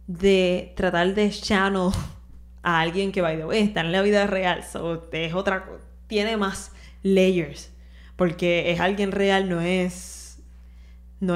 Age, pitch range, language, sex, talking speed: 10-29, 160-220 Hz, Spanish, female, 155 wpm